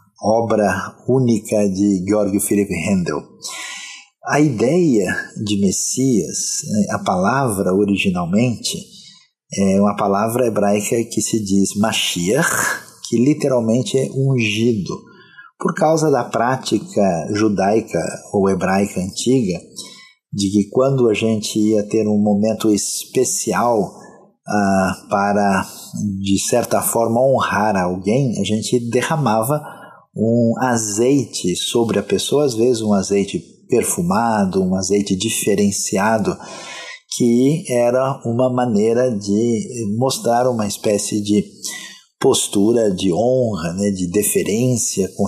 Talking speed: 110 wpm